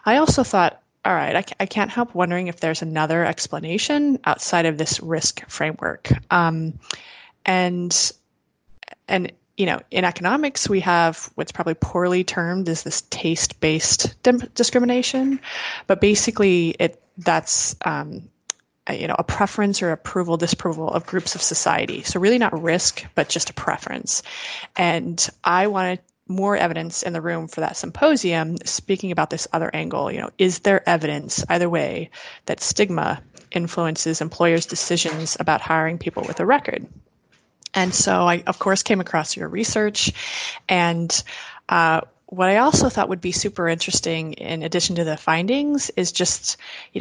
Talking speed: 155 wpm